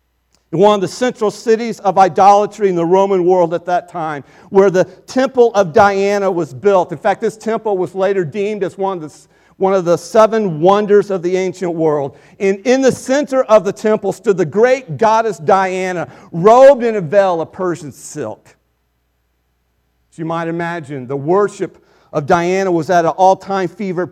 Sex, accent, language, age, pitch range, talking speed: male, American, English, 50-69, 160-210 Hz, 175 wpm